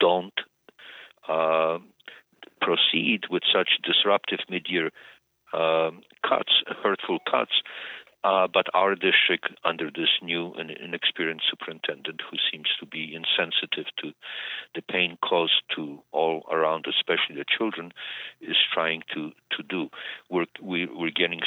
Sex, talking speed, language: male, 125 wpm, English